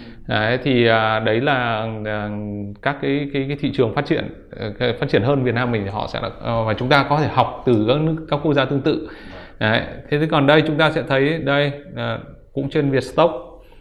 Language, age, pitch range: Vietnamese, 20-39, 115-150 Hz